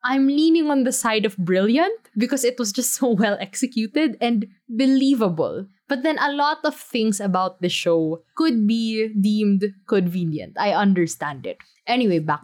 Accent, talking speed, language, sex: Filipino, 165 wpm, English, female